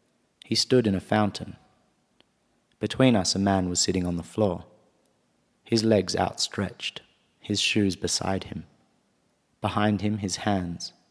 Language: English